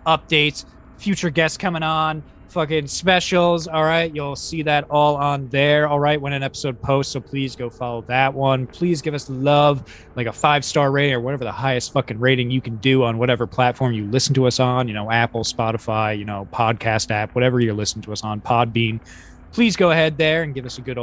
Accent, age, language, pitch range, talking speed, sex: American, 20-39, English, 115-165 Hz, 220 wpm, male